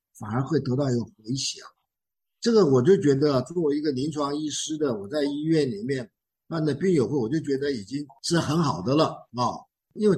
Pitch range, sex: 125-170 Hz, male